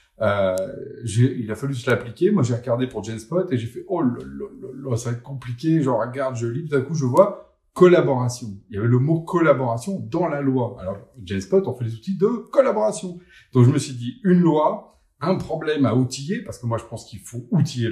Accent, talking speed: French, 255 wpm